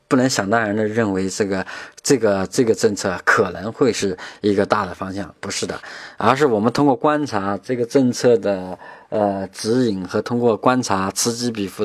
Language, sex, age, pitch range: Chinese, male, 20-39, 100-120 Hz